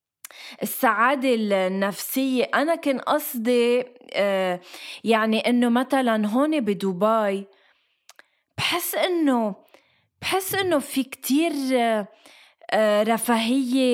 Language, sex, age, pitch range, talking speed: Arabic, female, 20-39, 230-295 Hz, 75 wpm